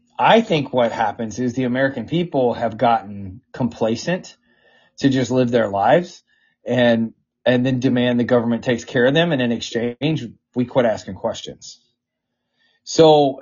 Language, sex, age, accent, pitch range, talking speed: English, male, 30-49, American, 120-150 Hz, 150 wpm